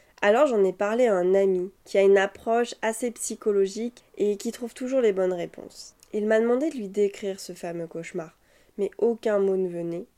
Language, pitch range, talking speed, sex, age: French, 195-230 Hz, 200 wpm, female, 20-39